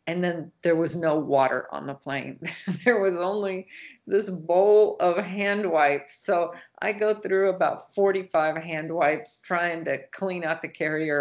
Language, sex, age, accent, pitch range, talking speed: English, female, 50-69, American, 150-195 Hz, 165 wpm